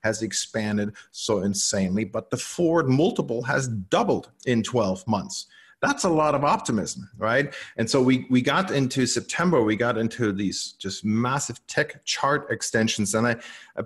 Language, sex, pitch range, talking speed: English, male, 100-120 Hz, 165 wpm